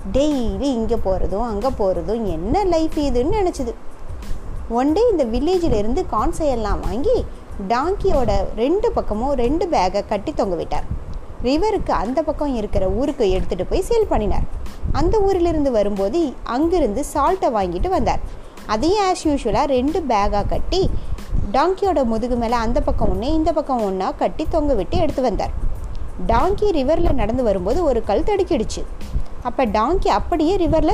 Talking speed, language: 140 wpm, Tamil